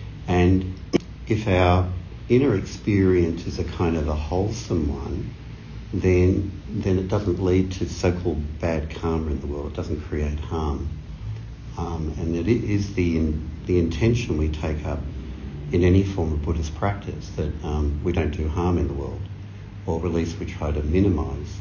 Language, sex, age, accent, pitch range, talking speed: English, male, 60-79, Australian, 80-95 Hz, 170 wpm